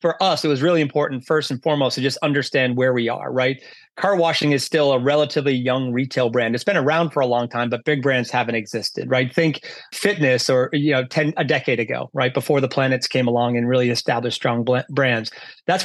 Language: English